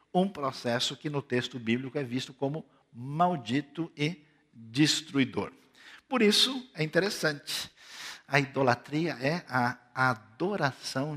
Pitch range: 115-150 Hz